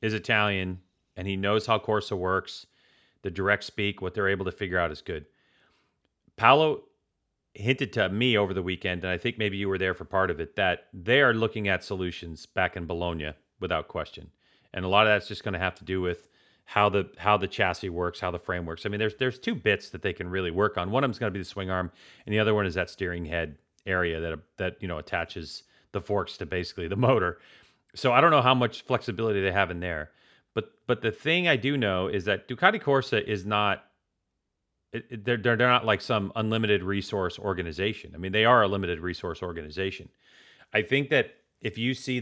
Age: 40-59